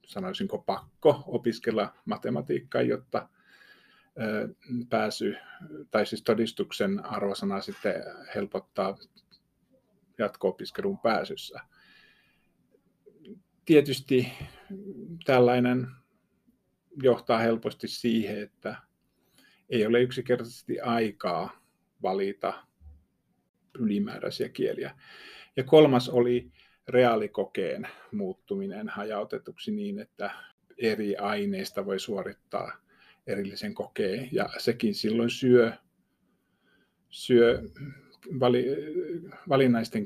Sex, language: male, Finnish